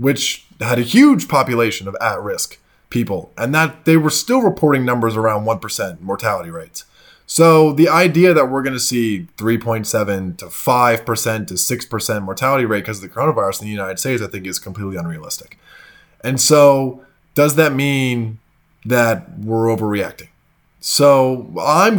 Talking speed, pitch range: 155 wpm, 115-145 Hz